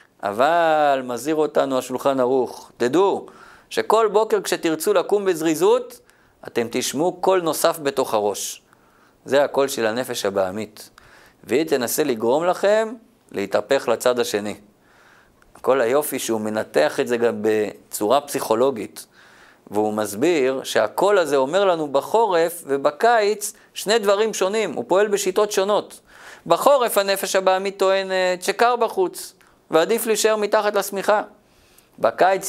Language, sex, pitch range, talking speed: Hebrew, male, 140-210 Hz, 120 wpm